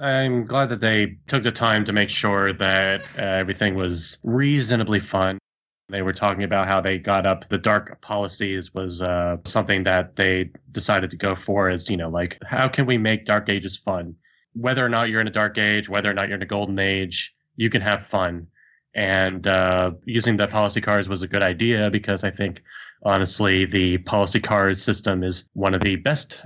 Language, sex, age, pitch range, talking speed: English, male, 20-39, 95-115 Hz, 205 wpm